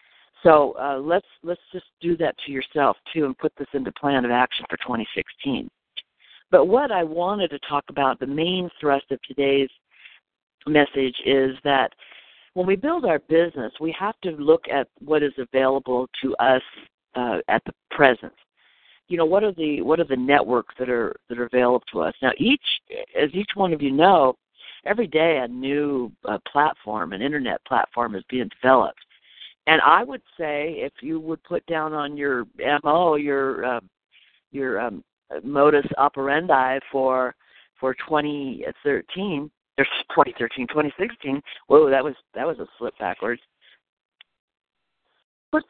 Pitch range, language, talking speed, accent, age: 135-180 Hz, English, 165 wpm, American, 60-79